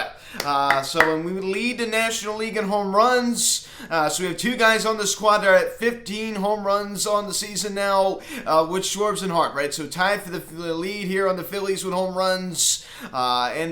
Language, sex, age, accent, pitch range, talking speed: English, male, 20-39, American, 150-200 Hz, 220 wpm